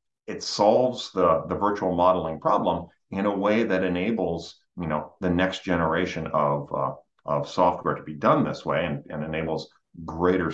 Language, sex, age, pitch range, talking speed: English, male, 40-59, 80-95 Hz, 160 wpm